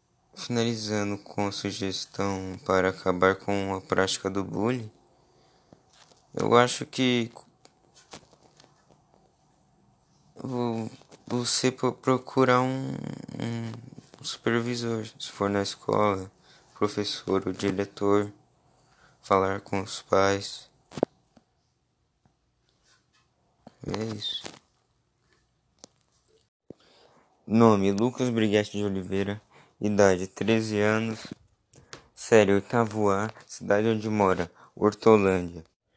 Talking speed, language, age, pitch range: 80 wpm, Portuguese, 20-39, 100-115 Hz